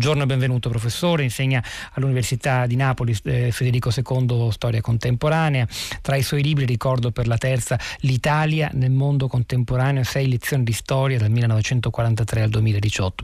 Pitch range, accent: 125-155 Hz, native